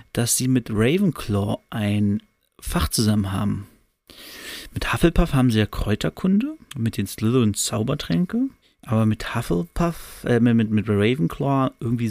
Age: 30-49